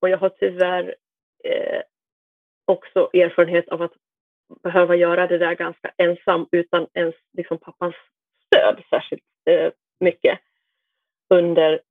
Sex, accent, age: female, Swedish, 30-49